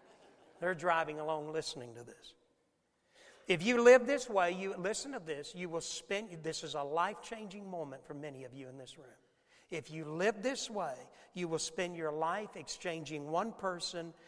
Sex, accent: male, American